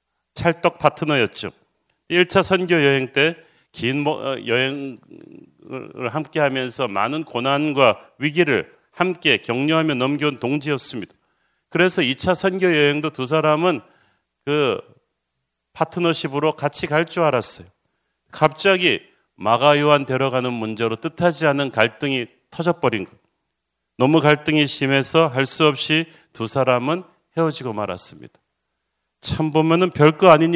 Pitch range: 135-165 Hz